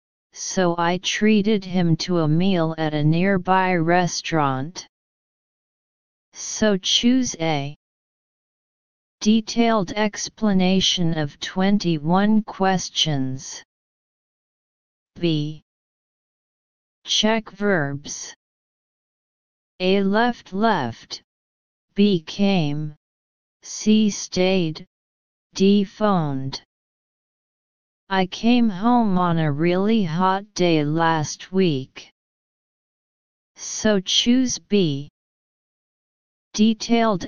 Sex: female